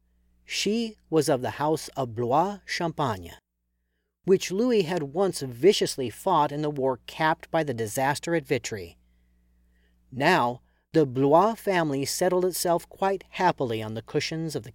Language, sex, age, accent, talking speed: English, male, 40-59, American, 140 wpm